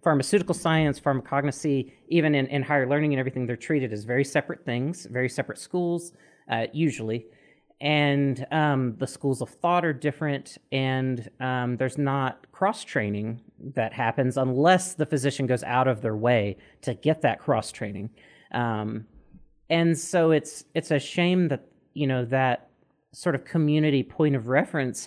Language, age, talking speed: English, 40-59, 155 wpm